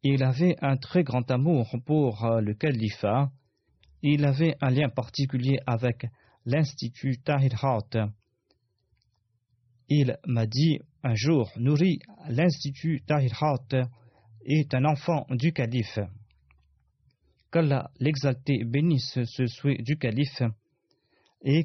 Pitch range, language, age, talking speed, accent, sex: 115-145 Hz, French, 40-59, 105 wpm, French, male